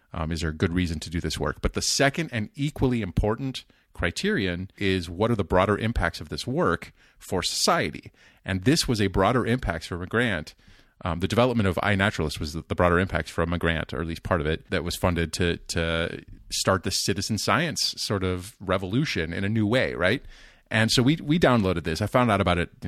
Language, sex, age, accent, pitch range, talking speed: English, male, 30-49, American, 85-110 Hz, 220 wpm